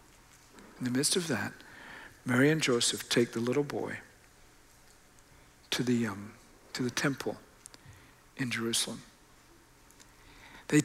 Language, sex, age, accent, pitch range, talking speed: English, male, 60-79, American, 130-195 Hz, 115 wpm